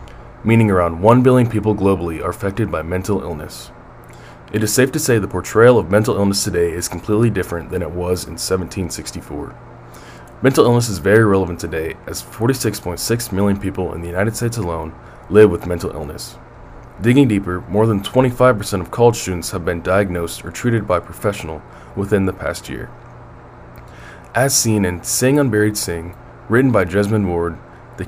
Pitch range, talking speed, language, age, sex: 85-110 Hz, 170 wpm, English, 20-39, male